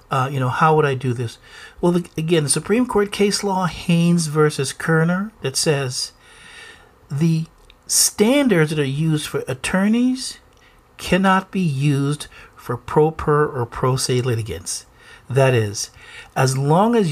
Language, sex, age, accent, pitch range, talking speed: English, male, 50-69, American, 120-165 Hz, 145 wpm